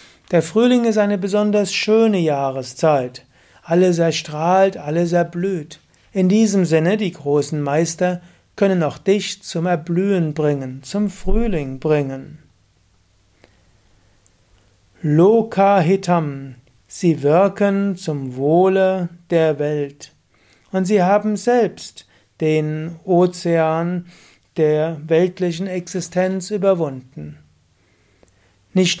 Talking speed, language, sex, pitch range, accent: 90 wpm, German, male, 145-190 Hz, German